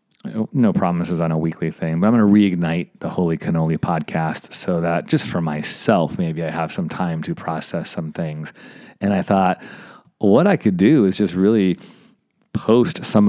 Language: English